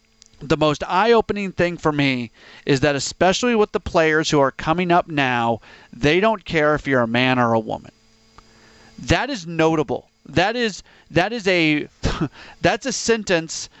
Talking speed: 165 wpm